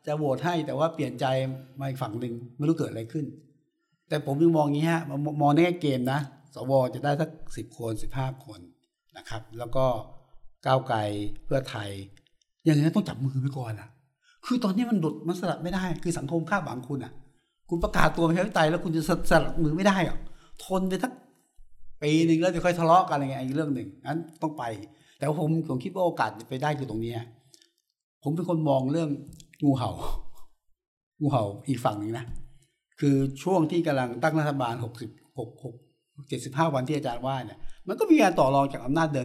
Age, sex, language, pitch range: 60-79, male, Thai, 120-160 Hz